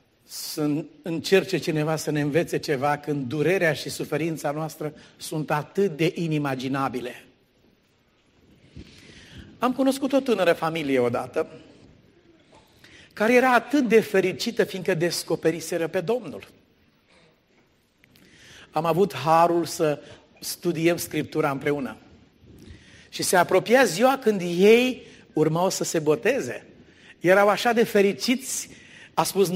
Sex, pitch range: male, 155-210 Hz